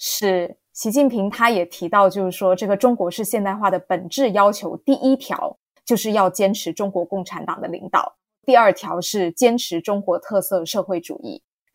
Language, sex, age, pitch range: Chinese, female, 20-39, 185-245 Hz